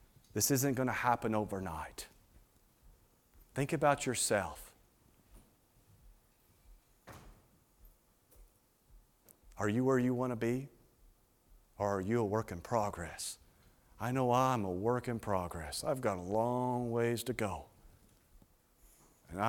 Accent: American